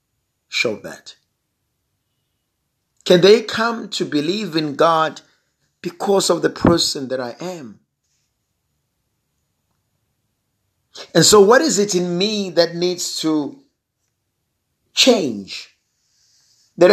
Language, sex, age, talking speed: English, male, 50-69, 100 wpm